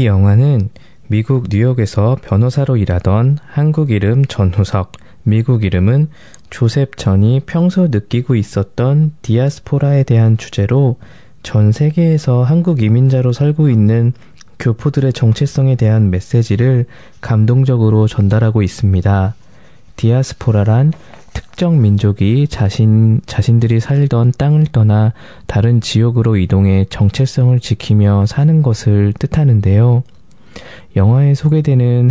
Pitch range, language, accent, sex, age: 105-140 Hz, Korean, native, male, 20-39